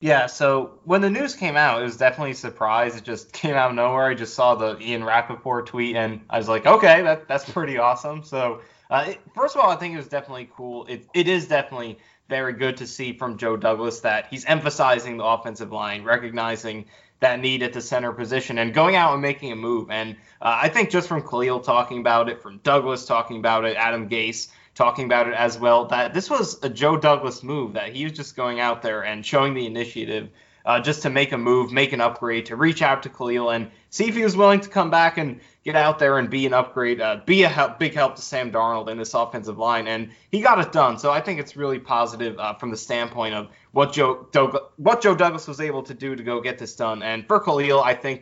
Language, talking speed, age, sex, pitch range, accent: English, 240 wpm, 20-39, male, 115-140 Hz, American